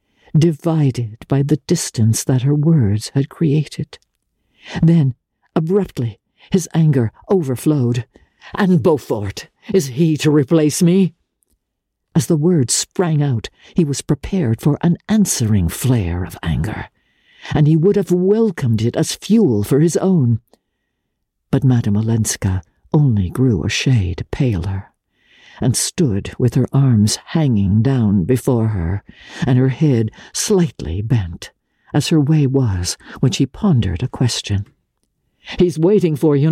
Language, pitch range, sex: English, 115-175 Hz, female